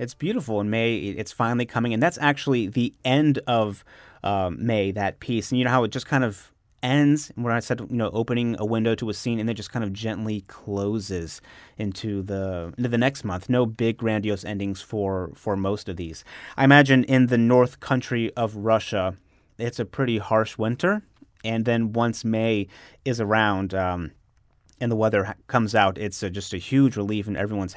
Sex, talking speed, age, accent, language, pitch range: male, 195 wpm, 30-49, American, English, 100-120 Hz